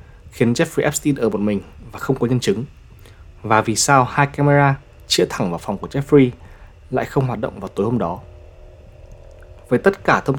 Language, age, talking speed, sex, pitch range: Vietnamese, 20-39, 195 wpm, male, 100-140 Hz